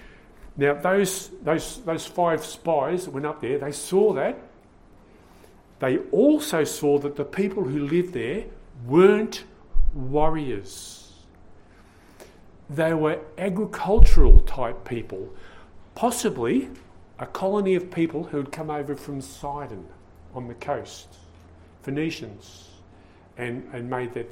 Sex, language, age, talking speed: male, English, 50-69, 120 wpm